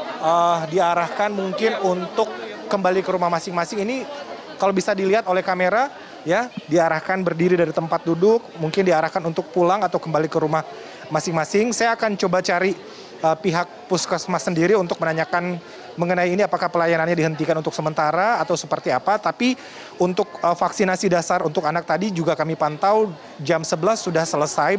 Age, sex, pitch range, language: 30-49, male, 160-185 Hz, Indonesian